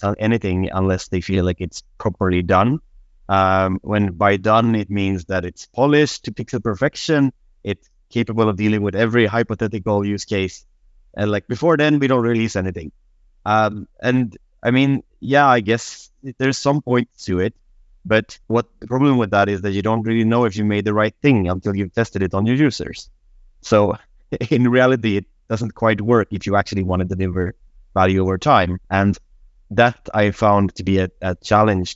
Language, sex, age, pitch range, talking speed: English, male, 30-49, 95-115 Hz, 185 wpm